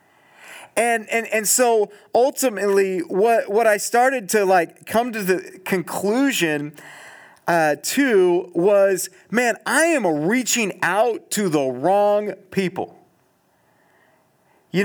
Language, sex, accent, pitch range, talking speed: English, male, American, 180-230 Hz, 115 wpm